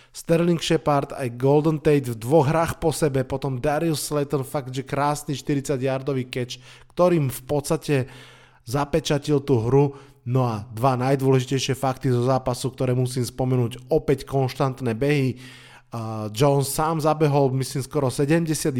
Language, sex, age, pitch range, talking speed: Slovak, male, 20-39, 125-145 Hz, 145 wpm